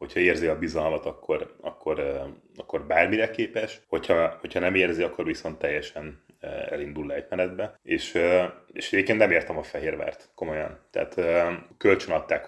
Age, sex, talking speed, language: 30-49, male, 145 wpm, Hungarian